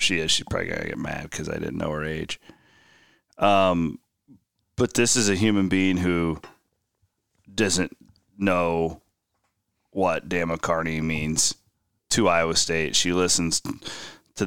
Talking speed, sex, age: 135 wpm, male, 30-49